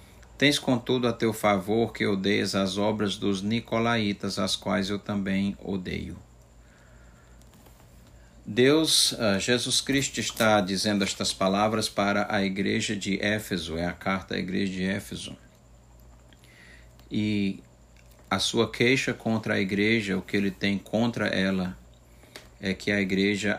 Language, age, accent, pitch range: Portuguese, 50-69, Brazilian, 90-105 Hz